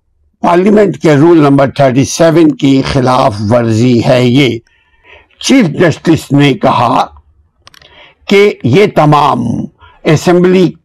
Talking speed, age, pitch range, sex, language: 100 wpm, 60-79, 130-180 Hz, male, Urdu